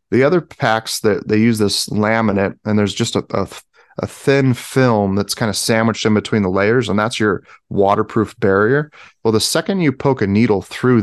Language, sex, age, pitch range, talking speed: English, male, 30-49, 100-115 Hz, 200 wpm